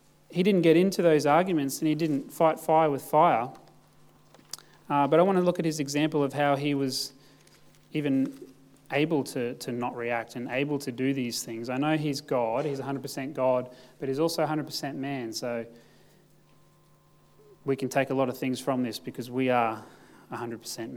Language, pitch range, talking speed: English, 125-155 Hz, 185 wpm